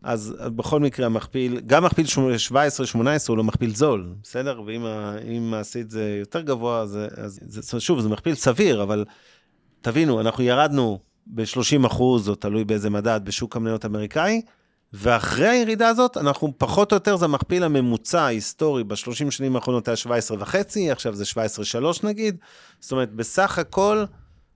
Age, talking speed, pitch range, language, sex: 30-49, 150 wpm, 110-140 Hz, Hebrew, male